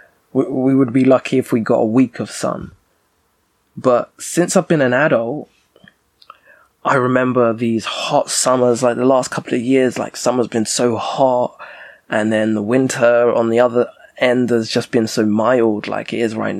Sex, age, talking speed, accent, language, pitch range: male, 20-39, 180 wpm, British, English, 115-135 Hz